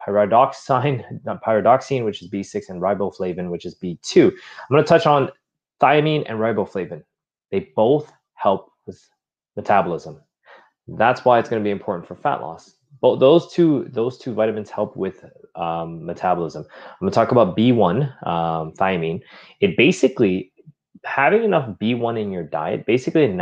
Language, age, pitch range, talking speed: English, 20-39, 95-130 Hz, 155 wpm